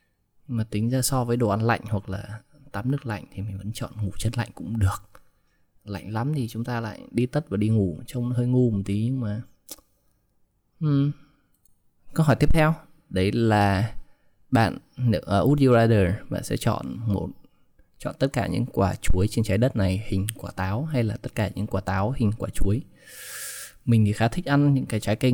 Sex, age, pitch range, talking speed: male, 20-39, 100-125 Hz, 205 wpm